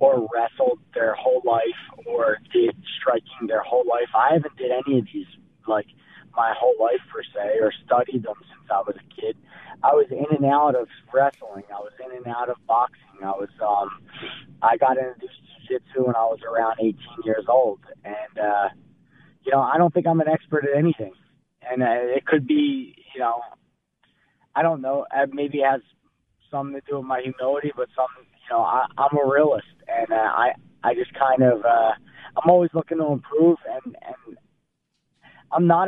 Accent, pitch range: American, 115-155 Hz